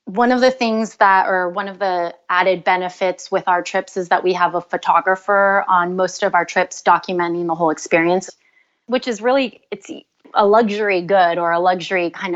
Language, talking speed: English, 195 wpm